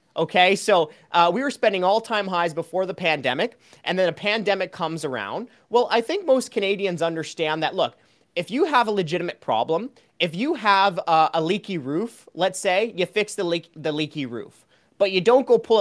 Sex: male